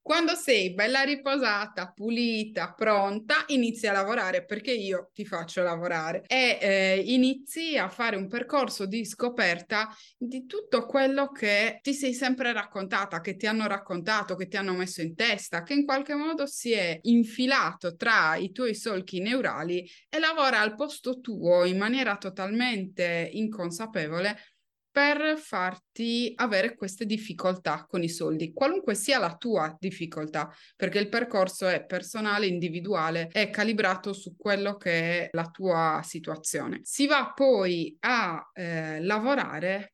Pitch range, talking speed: 175-230 Hz, 145 wpm